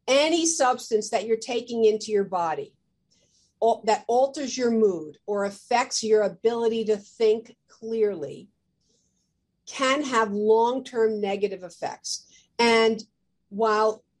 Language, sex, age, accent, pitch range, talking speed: English, female, 50-69, American, 200-235 Hz, 110 wpm